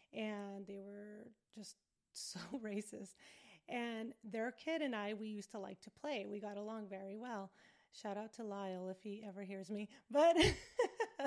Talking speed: 170 wpm